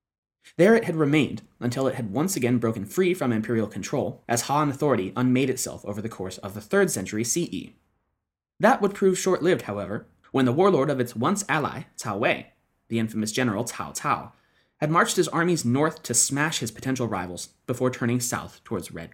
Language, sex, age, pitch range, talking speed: English, male, 20-39, 115-165 Hz, 190 wpm